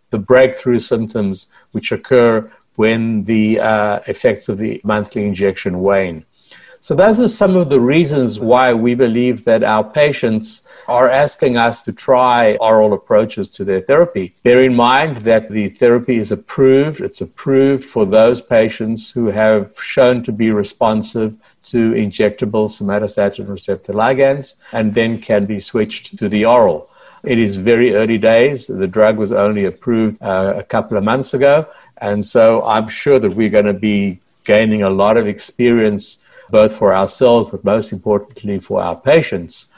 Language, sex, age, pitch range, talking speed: English, male, 60-79, 100-125 Hz, 165 wpm